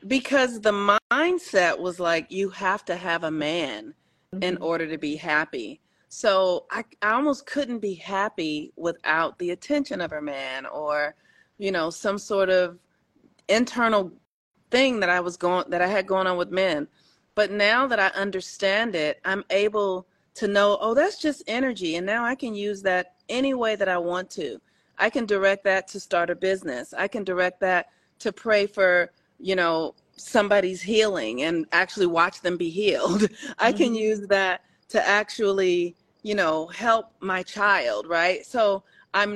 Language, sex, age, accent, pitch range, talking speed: English, female, 40-59, American, 175-215 Hz, 170 wpm